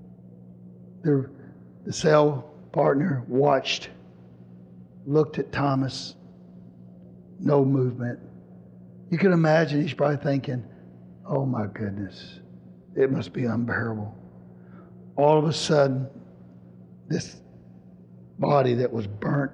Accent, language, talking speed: American, English, 100 wpm